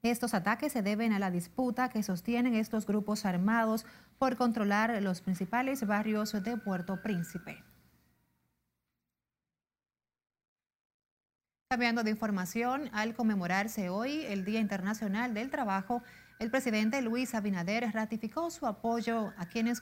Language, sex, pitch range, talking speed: Spanish, female, 195-230 Hz, 120 wpm